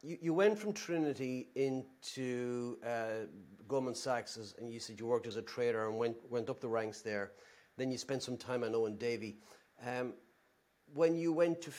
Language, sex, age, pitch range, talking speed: English, male, 40-59, 130-180 Hz, 200 wpm